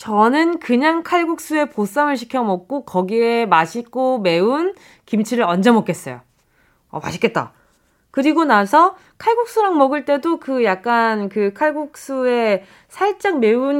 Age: 20-39